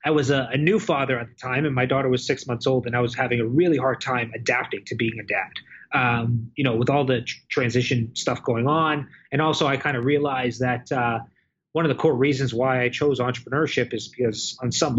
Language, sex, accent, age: English, male, American, 20-39